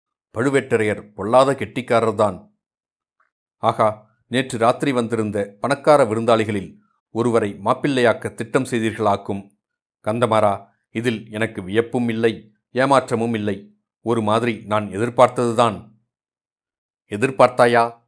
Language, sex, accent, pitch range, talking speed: Tamil, male, native, 105-125 Hz, 80 wpm